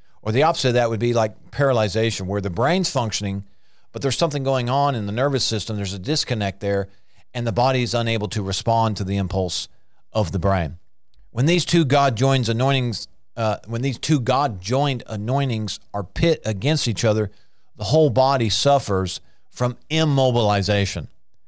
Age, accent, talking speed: 40-59, American, 175 wpm